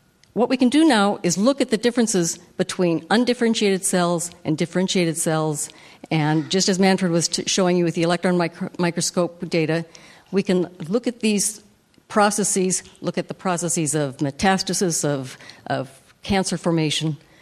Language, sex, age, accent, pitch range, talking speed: English, female, 60-79, American, 165-215 Hz, 150 wpm